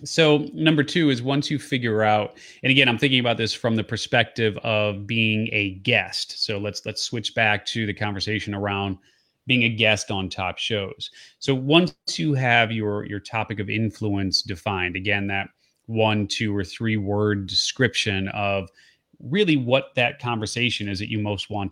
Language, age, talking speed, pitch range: English, 30-49, 175 wpm, 105-130 Hz